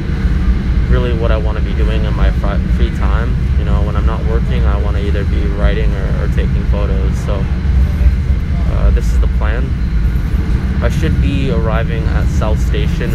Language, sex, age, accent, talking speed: English, male, 20-39, American, 185 wpm